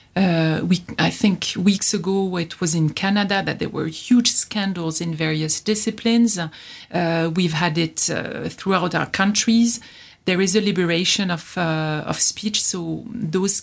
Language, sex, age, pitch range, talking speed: English, female, 40-59, 160-190 Hz, 160 wpm